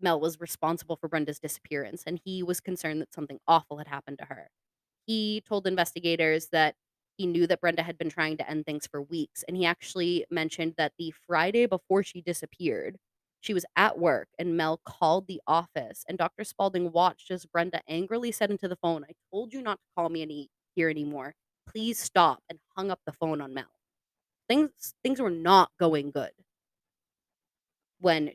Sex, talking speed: female, 190 wpm